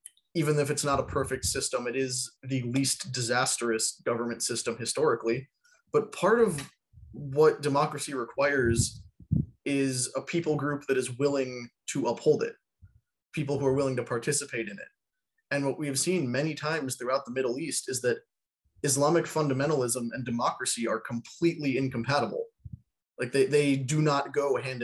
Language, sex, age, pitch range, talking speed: English, male, 20-39, 125-150 Hz, 160 wpm